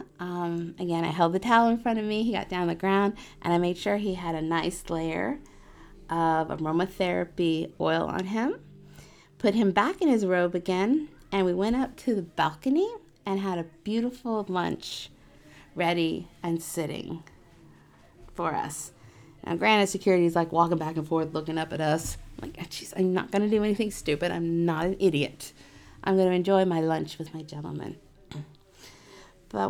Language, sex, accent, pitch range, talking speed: English, female, American, 170-235 Hz, 180 wpm